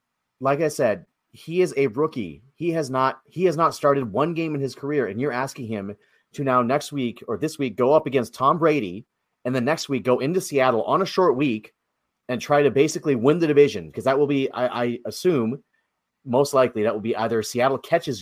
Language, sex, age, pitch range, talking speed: English, male, 30-49, 110-135 Hz, 225 wpm